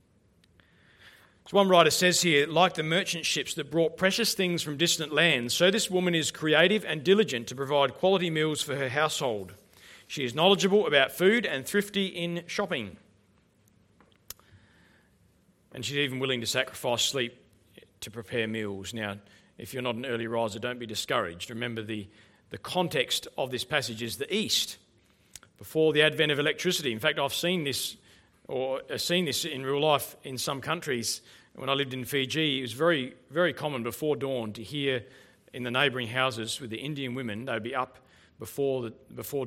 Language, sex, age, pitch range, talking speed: English, male, 40-59, 115-155 Hz, 180 wpm